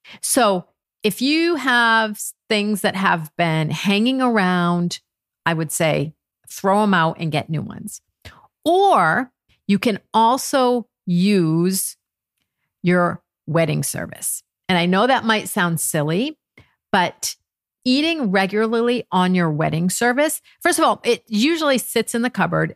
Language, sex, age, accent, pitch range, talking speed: English, female, 50-69, American, 165-225 Hz, 135 wpm